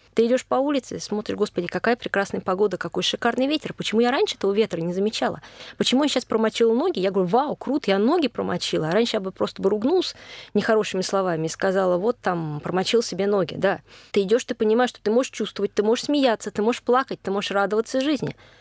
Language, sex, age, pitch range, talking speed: Russian, female, 20-39, 185-245 Hz, 215 wpm